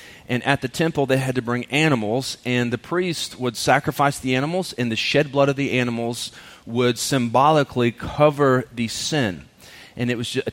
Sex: male